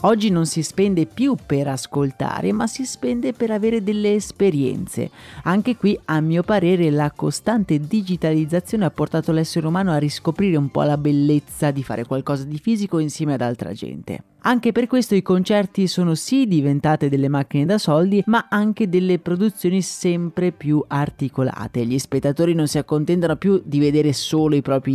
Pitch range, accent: 145-205 Hz, native